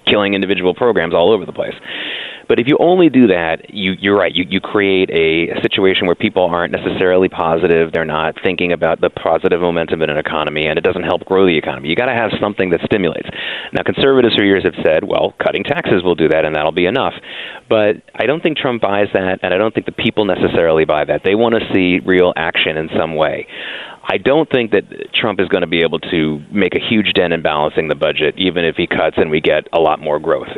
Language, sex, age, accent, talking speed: English, male, 30-49, American, 240 wpm